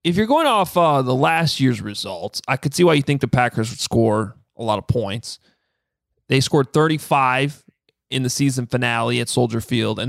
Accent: American